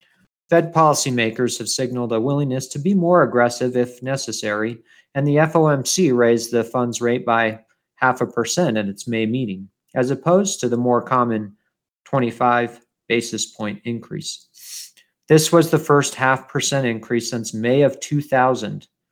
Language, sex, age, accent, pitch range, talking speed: English, male, 40-59, American, 115-145 Hz, 150 wpm